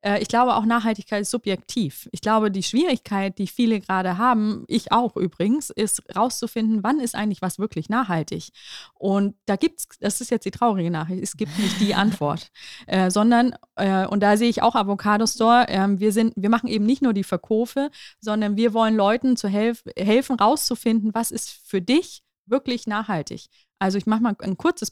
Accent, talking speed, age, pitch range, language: German, 195 wpm, 20-39, 200-240 Hz, German